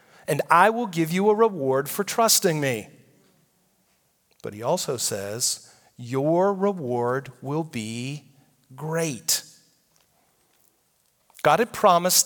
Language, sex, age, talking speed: English, male, 40-59, 110 wpm